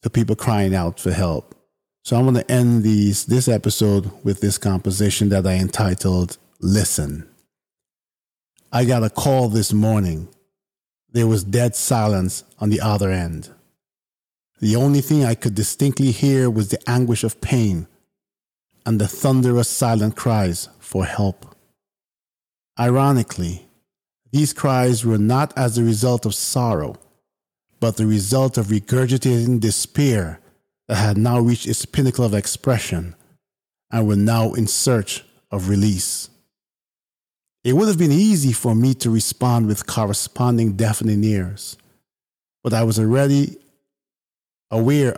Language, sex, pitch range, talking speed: English, male, 105-125 Hz, 135 wpm